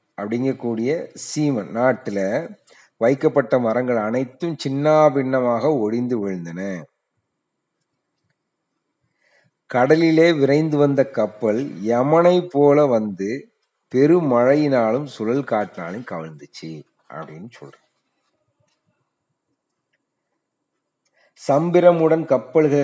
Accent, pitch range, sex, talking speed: native, 110-150 Hz, male, 65 wpm